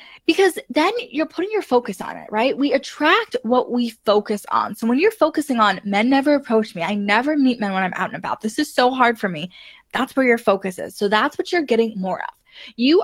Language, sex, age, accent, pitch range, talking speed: English, female, 20-39, American, 220-300 Hz, 240 wpm